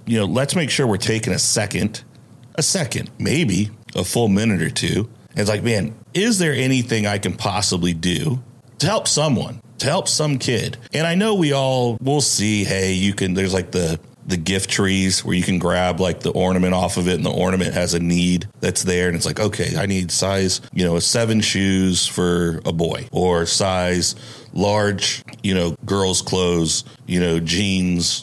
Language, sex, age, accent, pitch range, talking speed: English, male, 40-59, American, 90-120 Hz, 200 wpm